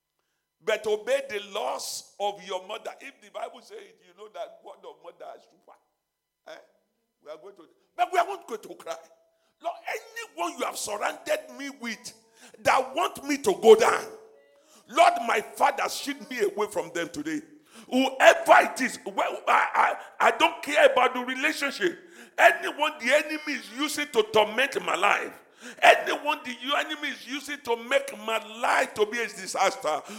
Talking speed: 165 wpm